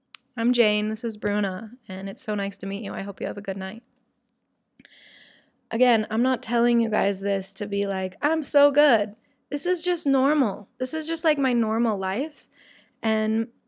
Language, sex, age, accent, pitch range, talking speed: English, female, 20-39, American, 200-260 Hz, 195 wpm